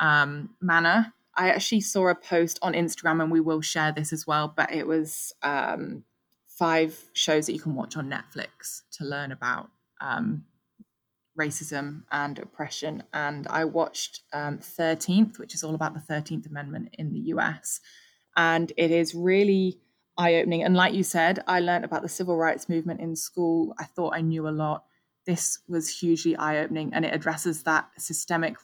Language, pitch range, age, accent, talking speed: English, 155-170 Hz, 20-39, British, 175 wpm